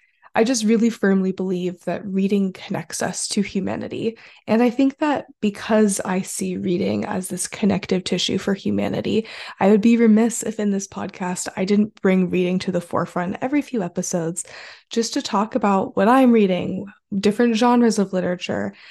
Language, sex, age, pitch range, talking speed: English, female, 20-39, 195-225 Hz, 170 wpm